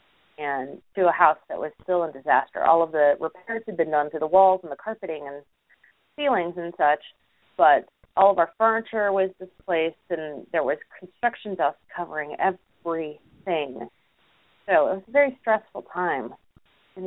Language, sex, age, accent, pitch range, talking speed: English, female, 30-49, American, 165-220 Hz, 170 wpm